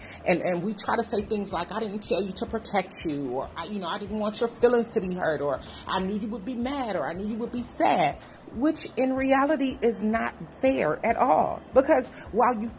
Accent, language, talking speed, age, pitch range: American, English, 245 wpm, 30-49, 180-255 Hz